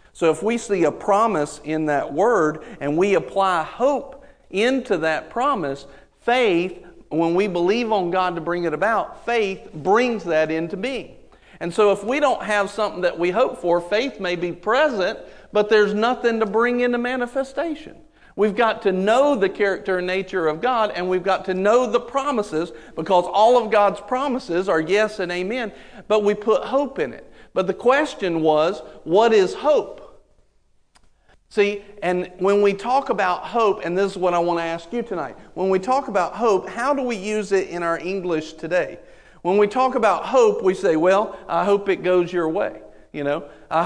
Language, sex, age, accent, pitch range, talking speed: English, male, 50-69, American, 175-230 Hz, 190 wpm